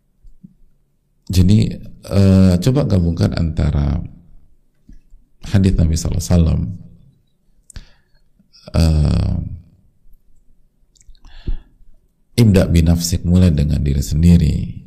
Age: 50-69